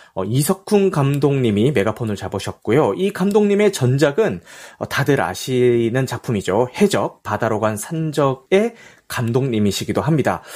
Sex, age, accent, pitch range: male, 30-49, native, 115-180 Hz